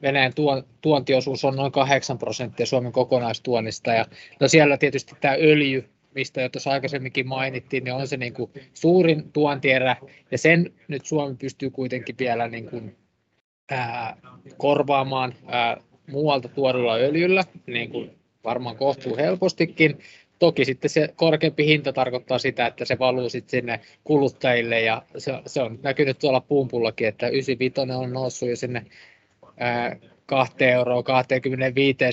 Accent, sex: native, male